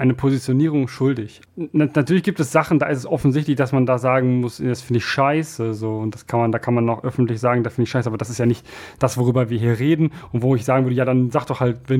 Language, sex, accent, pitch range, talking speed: German, male, German, 115-135 Hz, 280 wpm